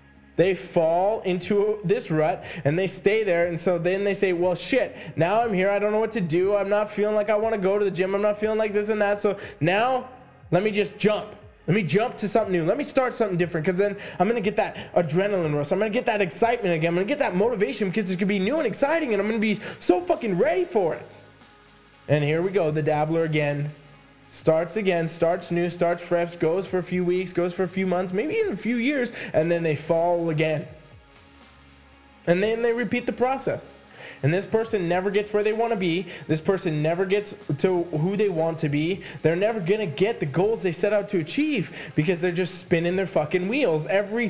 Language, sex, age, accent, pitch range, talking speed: English, male, 20-39, American, 165-215 Hz, 240 wpm